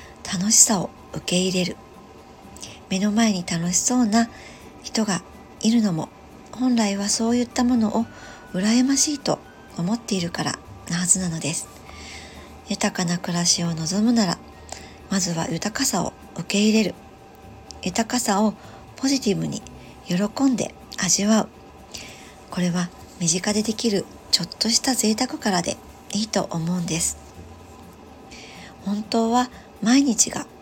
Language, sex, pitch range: Japanese, male, 175-220 Hz